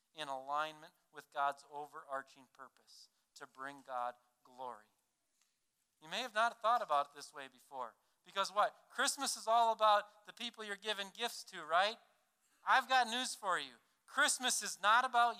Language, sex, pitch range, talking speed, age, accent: English, male, 150-225 Hz, 165 wpm, 40-59, American